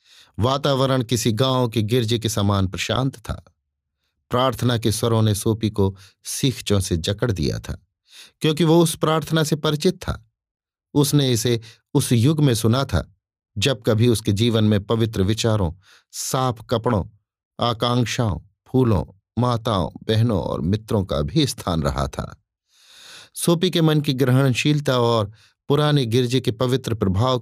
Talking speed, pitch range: 140 wpm, 100-135 Hz